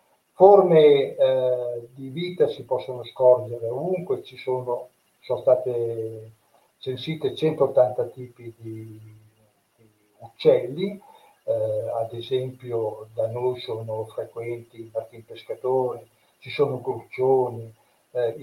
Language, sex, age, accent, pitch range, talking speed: Italian, male, 60-79, native, 120-155 Hz, 105 wpm